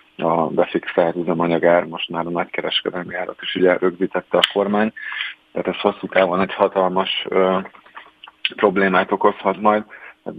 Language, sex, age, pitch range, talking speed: Hungarian, male, 30-49, 90-95 Hz, 140 wpm